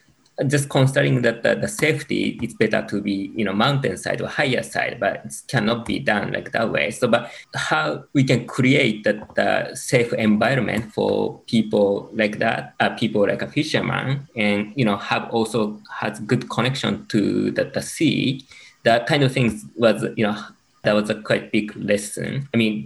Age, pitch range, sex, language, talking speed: 20-39, 105-130 Hz, male, English, 185 wpm